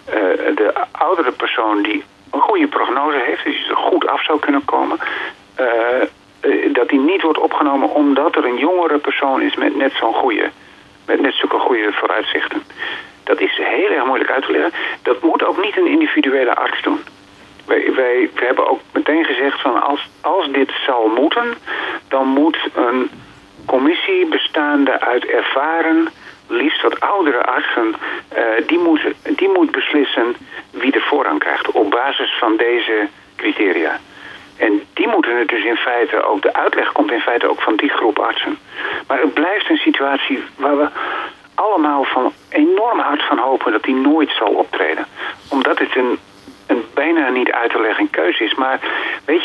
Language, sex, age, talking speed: Dutch, male, 50-69, 175 wpm